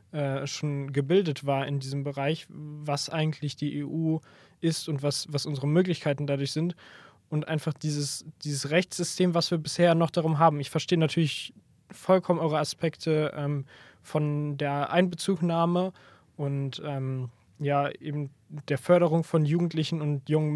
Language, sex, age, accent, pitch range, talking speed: German, male, 20-39, German, 145-170 Hz, 145 wpm